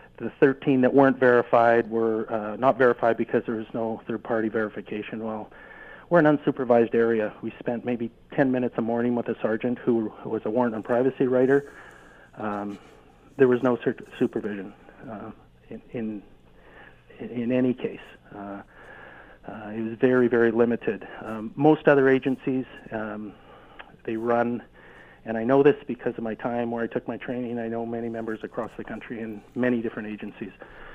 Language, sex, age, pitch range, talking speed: English, male, 50-69, 115-135 Hz, 165 wpm